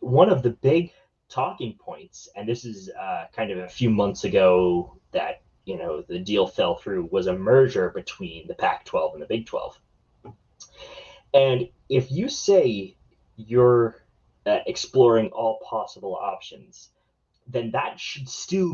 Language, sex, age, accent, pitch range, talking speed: English, male, 20-39, American, 95-155 Hz, 150 wpm